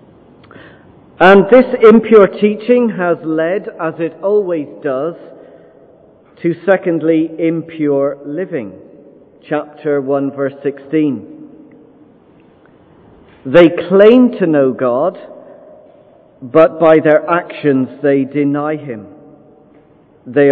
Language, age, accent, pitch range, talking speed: English, 50-69, British, 150-200 Hz, 90 wpm